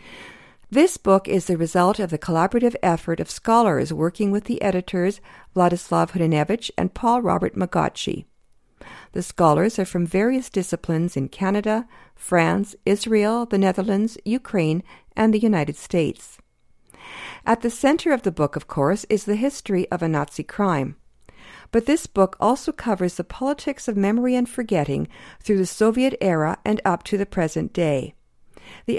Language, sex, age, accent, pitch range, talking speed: English, female, 50-69, American, 175-225 Hz, 155 wpm